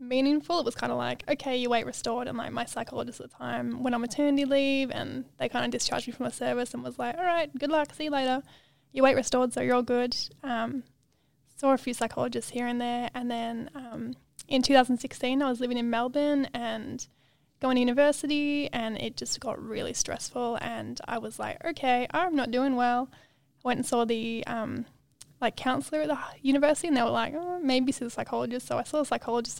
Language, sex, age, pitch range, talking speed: English, female, 10-29, 235-275 Hz, 220 wpm